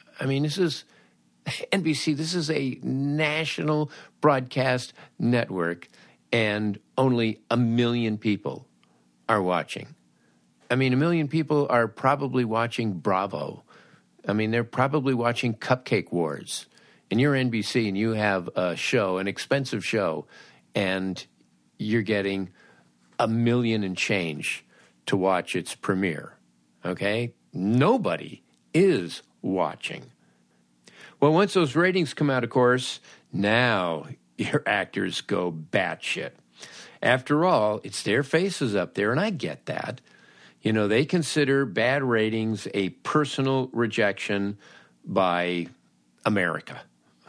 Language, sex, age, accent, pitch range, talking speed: English, male, 50-69, American, 95-140 Hz, 120 wpm